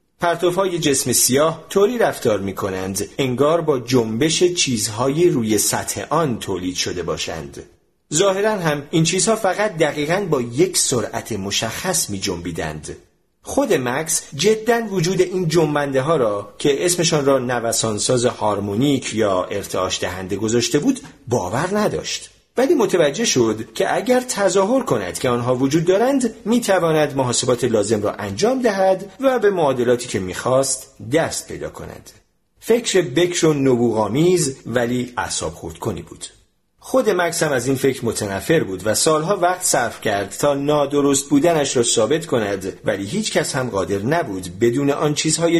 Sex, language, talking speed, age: male, Persian, 145 wpm, 40-59